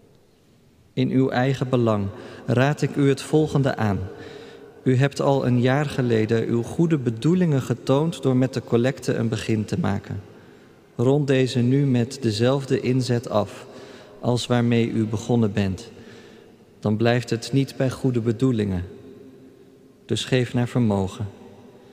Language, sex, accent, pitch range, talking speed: Dutch, male, Dutch, 115-135 Hz, 140 wpm